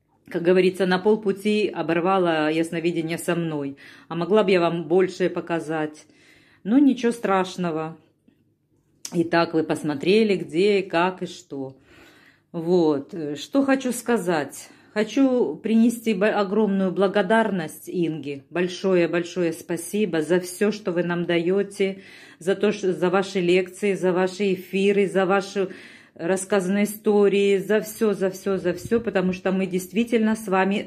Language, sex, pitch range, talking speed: Russian, female, 165-205 Hz, 130 wpm